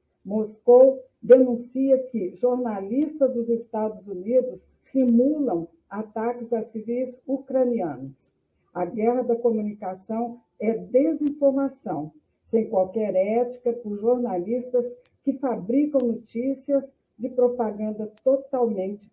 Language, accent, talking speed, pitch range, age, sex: Portuguese, Brazilian, 90 wpm, 215-255 Hz, 50-69, female